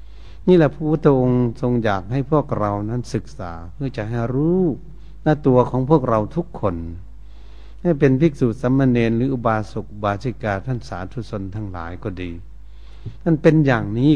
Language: Thai